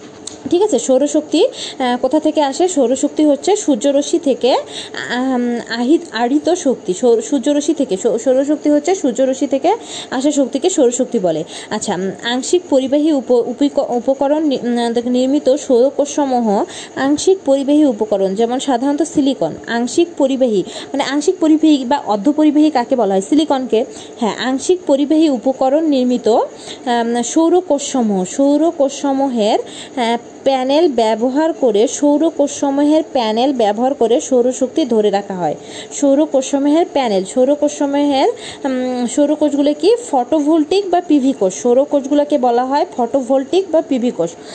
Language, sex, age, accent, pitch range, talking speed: Bengali, female, 20-39, native, 245-295 Hz, 105 wpm